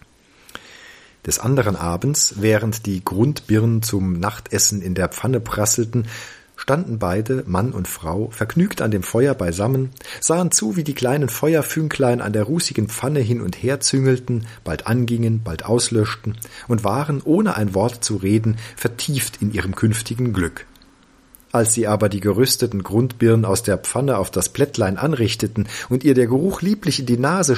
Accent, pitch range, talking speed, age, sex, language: German, 105-135 Hz, 160 wpm, 40-59, male, German